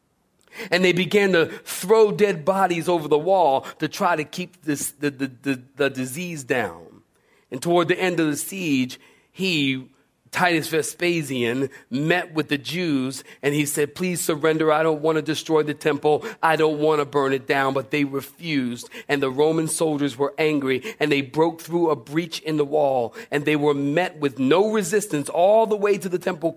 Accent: American